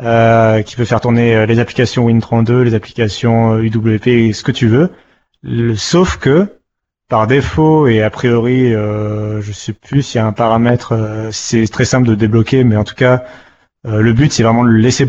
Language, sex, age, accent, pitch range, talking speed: French, male, 30-49, French, 110-130 Hz, 205 wpm